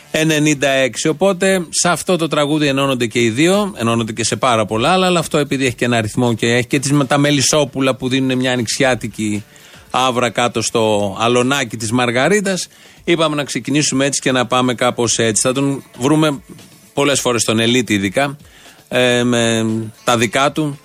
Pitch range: 125-155 Hz